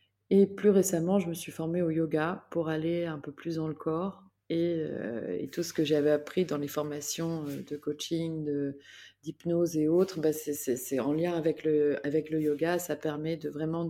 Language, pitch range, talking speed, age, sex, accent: French, 155-185 Hz, 210 wpm, 30-49, female, French